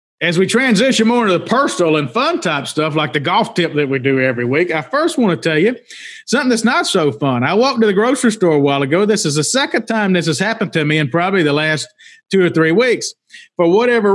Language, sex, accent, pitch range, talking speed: English, male, American, 155-215 Hz, 255 wpm